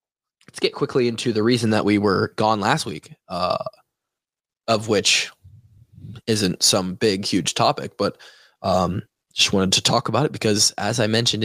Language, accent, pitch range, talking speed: English, American, 110-135 Hz, 170 wpm